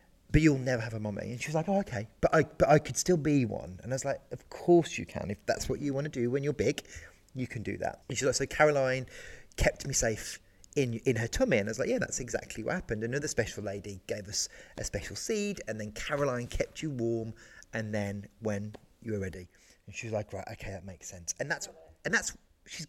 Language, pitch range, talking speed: English, 105-150 Hz, 255 wpm